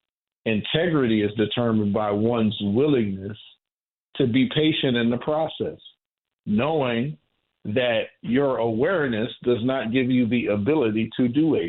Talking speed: 130 wpm